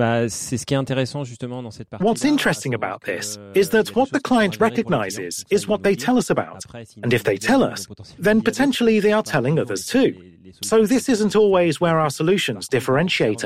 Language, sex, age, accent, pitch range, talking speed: French, male, 30-49, British, 120-200 Hz, 160 wpm